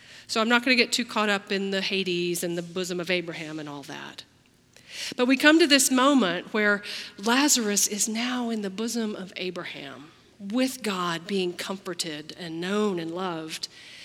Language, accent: English, American